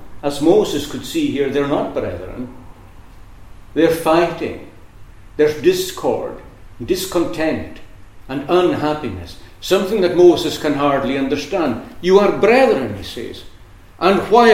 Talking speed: 115 wpm